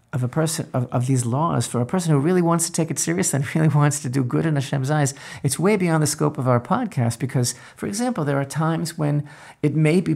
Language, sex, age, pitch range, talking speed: English, male, 50-69, 125-160 Hz, 260 wpm